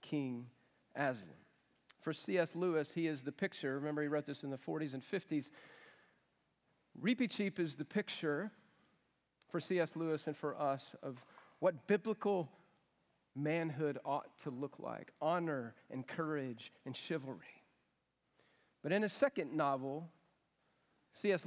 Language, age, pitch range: English, 40-59, 145-175 Hz